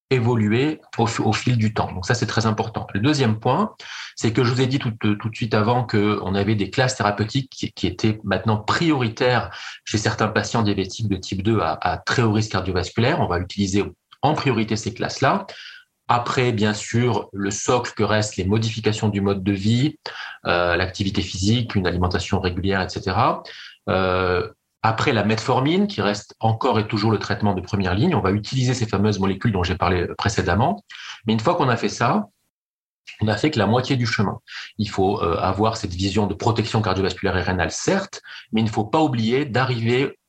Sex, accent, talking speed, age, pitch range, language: male, French, 200 wpm, 30-49, 100-115 Hz, French